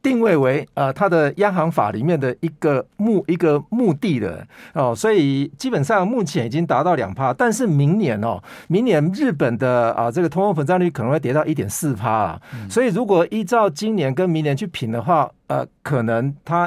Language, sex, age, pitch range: Chinese, male, 50-69, 135-195 Hz